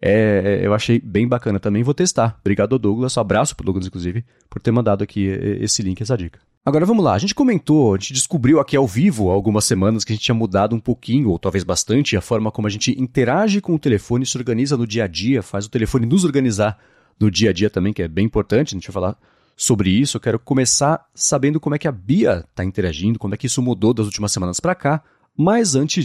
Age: 30-49